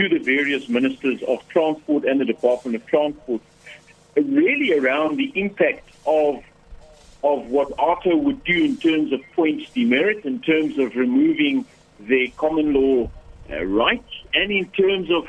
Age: 60-79